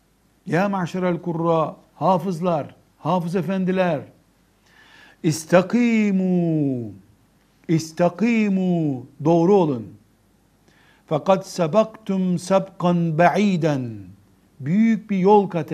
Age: 60-79